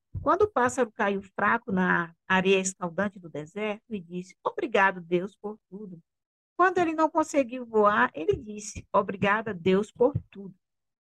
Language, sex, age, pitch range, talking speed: English, female, 50-69, 195-280 Hz, 145 wpm